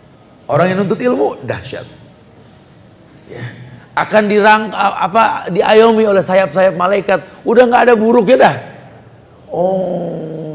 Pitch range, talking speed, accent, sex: 125-200 Hz, 110 wpm, native, male